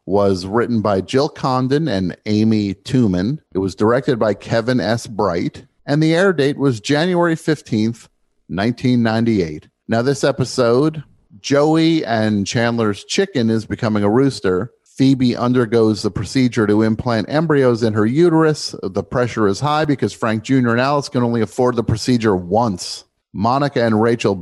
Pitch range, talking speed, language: 105-140 Hz, 150 wpm, English